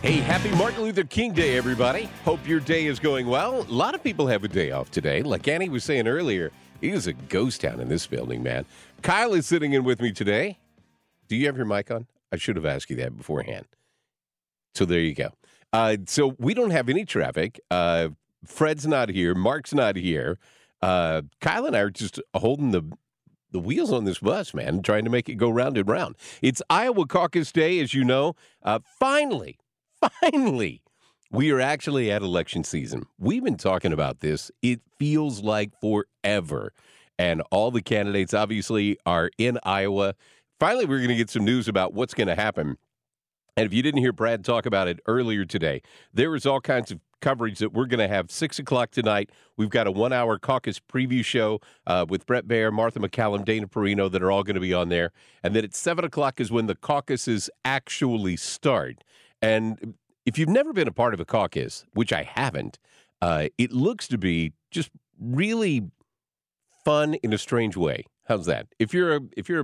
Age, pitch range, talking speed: 50-69, 100-140 Hz, 200 wpm